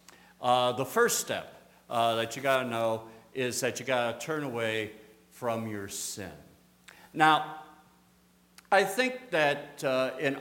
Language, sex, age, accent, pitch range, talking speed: English, male, 60-79, American, 95-155 Hz, 150 wpm